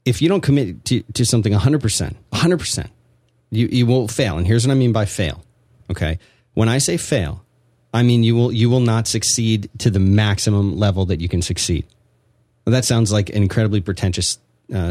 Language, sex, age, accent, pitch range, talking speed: English, male, 30-49, American, 95-120 Hz, 195 wpm